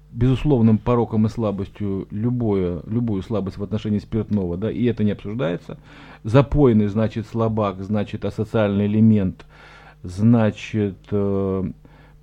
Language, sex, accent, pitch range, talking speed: Russian, male, native, 105-145 Hz, 115 wpm